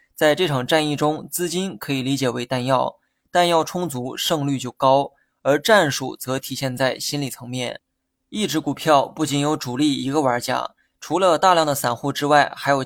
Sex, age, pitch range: male, 20-39, 130-150 Hz